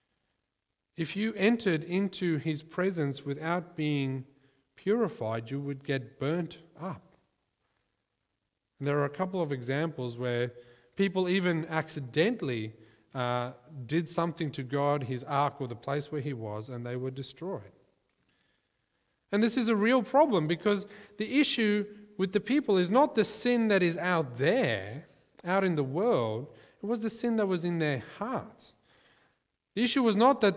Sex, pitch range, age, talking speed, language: male, 135-195 Hz, 40-59, 155 wpm, English